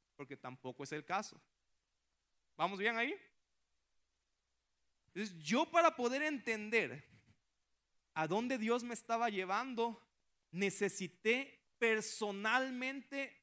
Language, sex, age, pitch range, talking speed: Spanish, male, 30-49, 155-235 Hz, 90 wpm